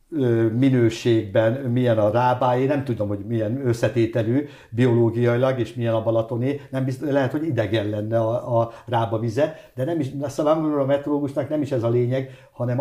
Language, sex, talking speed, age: English, male, 165 wpm, 60-79